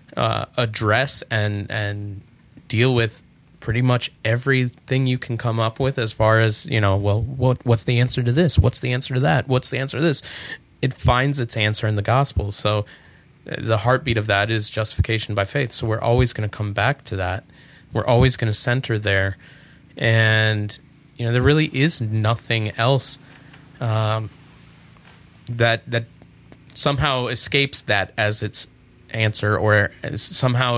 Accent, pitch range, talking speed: American, 105-125 Hz, 170 wpm